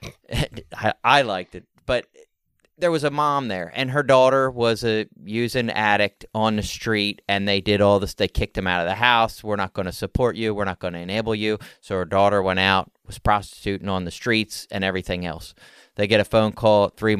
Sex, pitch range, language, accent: male, 100-115 Hz, English, American